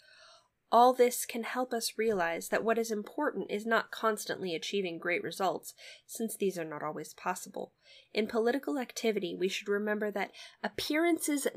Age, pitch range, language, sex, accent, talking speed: 10-29, 190-235 Hz, English, female, American, 155 wpm